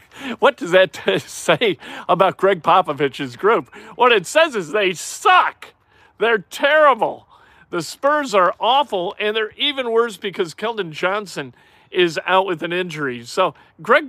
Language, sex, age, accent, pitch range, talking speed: English, male, 50-69, American, 175-225 Hz, 145 wpm